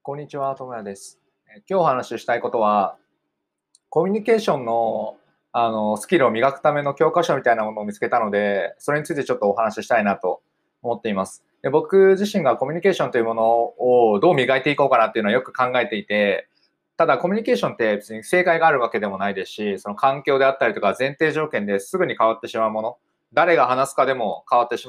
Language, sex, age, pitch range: Japanese, male, 20-39, 115-180 Hz